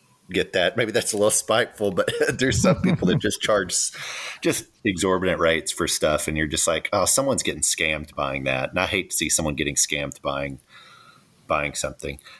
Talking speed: 195 wpm